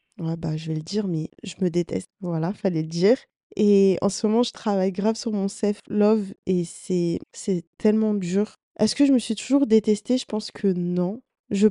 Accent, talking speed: French, 215 wpm